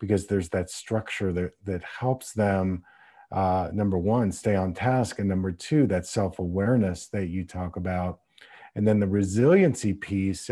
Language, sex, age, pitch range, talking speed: English, male, 40-59, 95-115 Hz, 165 wpm